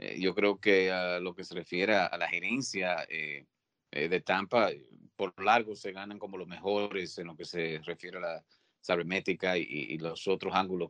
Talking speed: 200 wpm